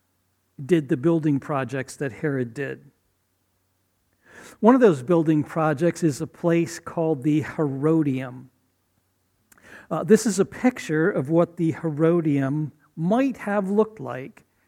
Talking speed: 125 wpm